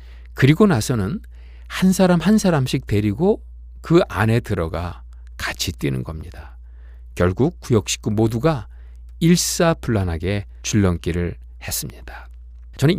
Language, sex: Korean, male